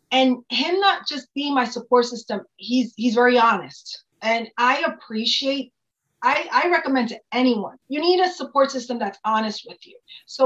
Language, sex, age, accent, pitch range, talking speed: English, female, 30-49, American, 225-270 Hz, 170 wpm